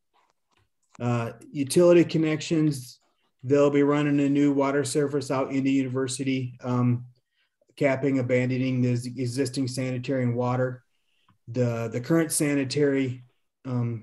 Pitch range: 120-140 Hz